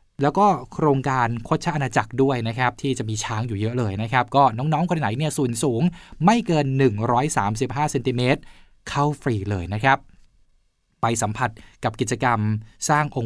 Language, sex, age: Thai, male, 20-39